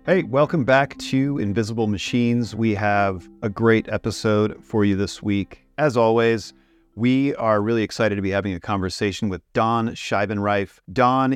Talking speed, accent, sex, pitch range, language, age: 160 wpm, American, male, 100-120 Hz, English, 40-59